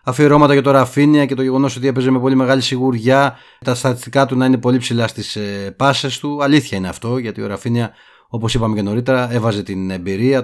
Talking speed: 205 wpm